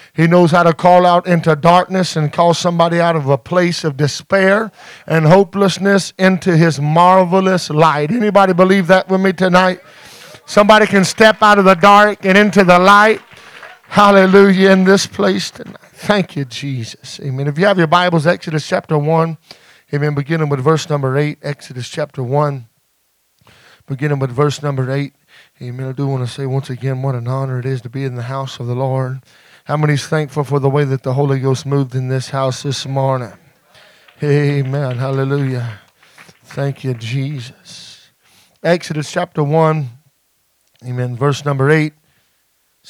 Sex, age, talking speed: male, 40-59, 170 wpm